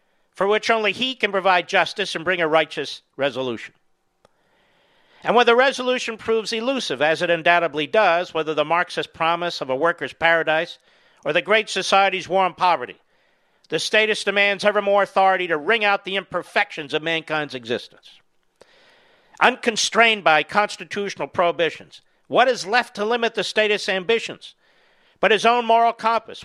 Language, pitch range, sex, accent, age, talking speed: English, 170-220 Hz, male, American, 50-69, 155 wpm